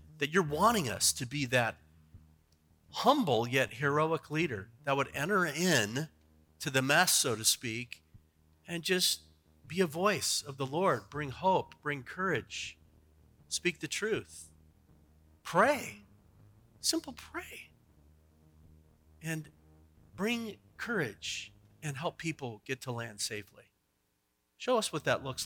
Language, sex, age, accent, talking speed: English, male, 40-59, American, 125 wpm